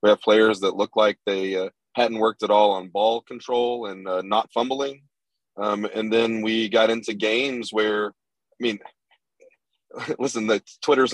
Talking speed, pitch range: 170 wpm, 110-135 Hz